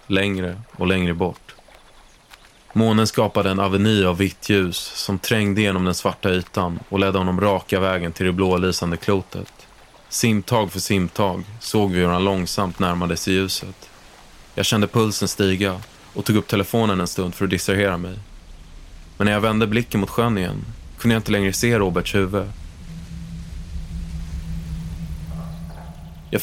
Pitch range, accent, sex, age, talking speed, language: 90-120 Hz, native, male, 20-39, 155 wpm, Swedish